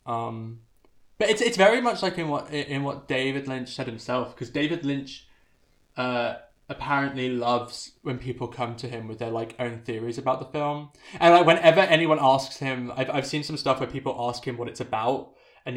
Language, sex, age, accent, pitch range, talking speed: English, male, 20-39, British, 125-160 Hz, 200 wpm